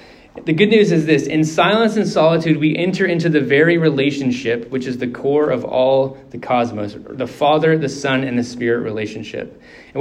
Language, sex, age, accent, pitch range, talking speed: English, male, 20-39, American, 135-170 Hz, 190 wpm